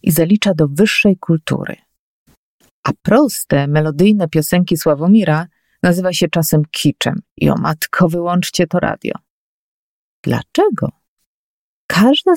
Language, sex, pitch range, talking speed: Polish, female, 155-205 Hz, 105 wpm